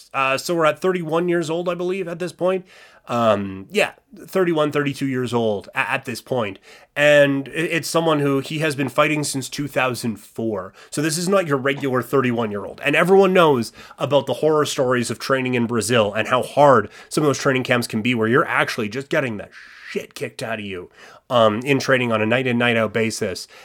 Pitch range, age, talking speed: 120-155 Hz, 30-49, 195 wpm